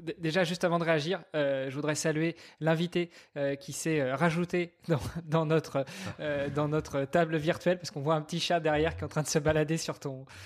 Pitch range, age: 145-175 Hz, 20-39